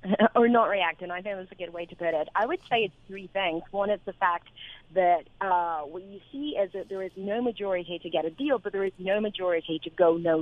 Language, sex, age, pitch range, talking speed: English, female, 30-49, 160-190 Hz, 260 wpm